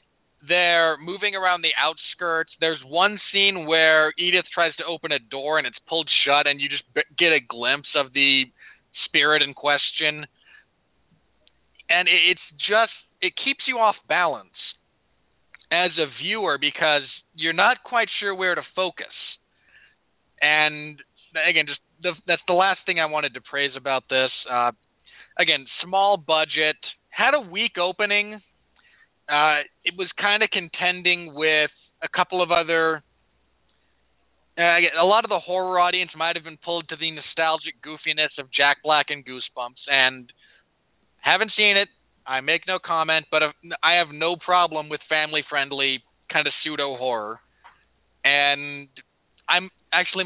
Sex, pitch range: male, 145-180 Hz